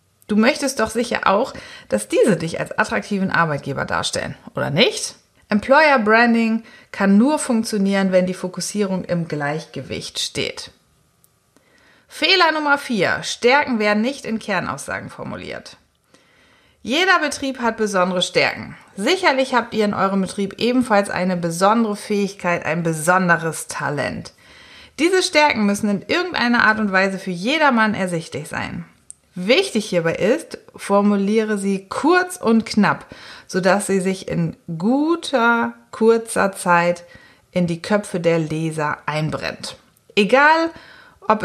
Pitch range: 175-235 Hz